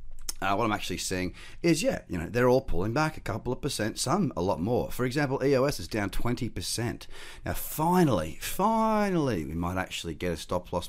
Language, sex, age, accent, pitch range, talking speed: English, male, 30-49, Australian, 85-110 Hz, 205 wpm